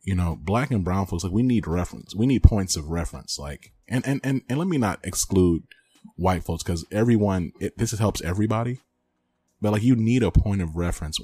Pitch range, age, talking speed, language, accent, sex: 80-100 Hz, 30-49, 215 wpm, English, American, male